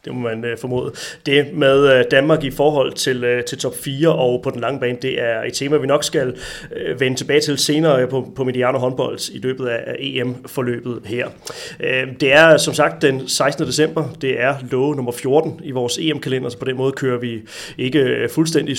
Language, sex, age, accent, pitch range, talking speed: Danish, male, 30-49, native, 120-145 Hz, 195 wpm